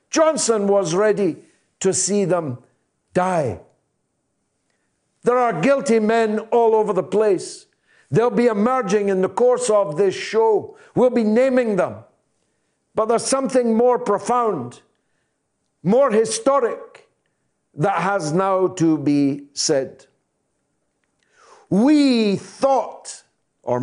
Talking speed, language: 110 wpm, English